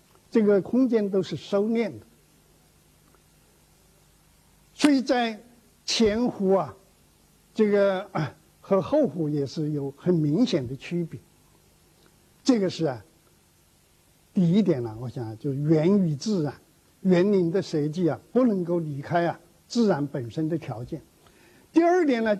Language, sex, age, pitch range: Chinese, male, 60-79, 155-225 Hz